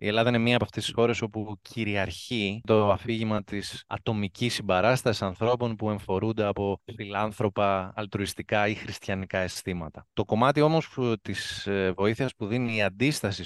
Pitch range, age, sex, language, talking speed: 95-115 Hz, 20-39, male, Greek, 145 wpm